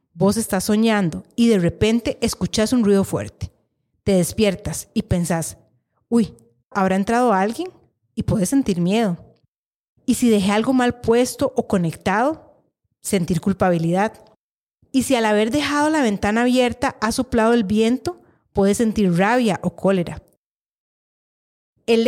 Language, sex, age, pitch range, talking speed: Spanish, female, 30-49, 175-240 Hz, 135 wpm